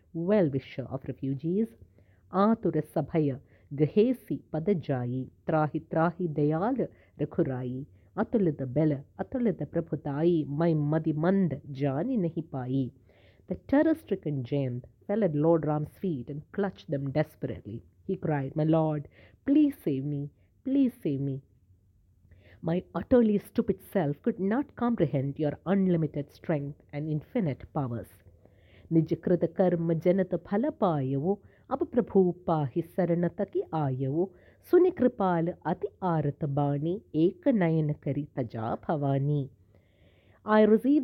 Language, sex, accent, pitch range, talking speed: English, female, Indian, 140-195 Hz, 60 wpm